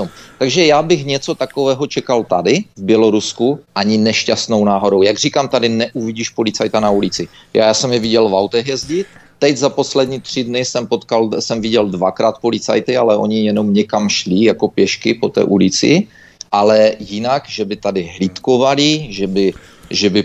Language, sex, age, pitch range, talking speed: Czech, male, 30-49, 100-130 Hz, 170 wpm